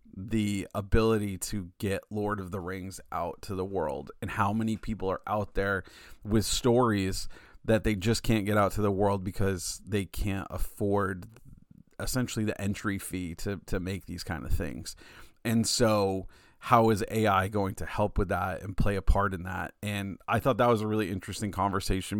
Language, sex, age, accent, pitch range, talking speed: English, male, 30-49, American, 95-110 Hz, 190 wpm